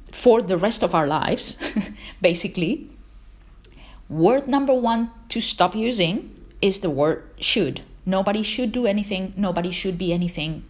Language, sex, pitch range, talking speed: English, female, 170-225 Hz, 140 wpm